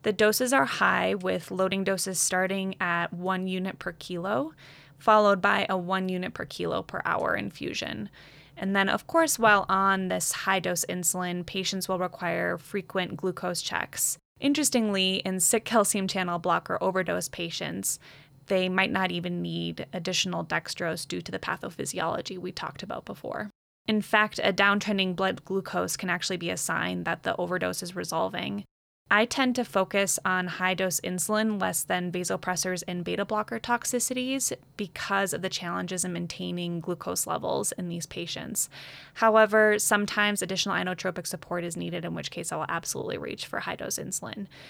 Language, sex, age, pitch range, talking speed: English, female, 20-39, 175-200 Hz, 160 wpm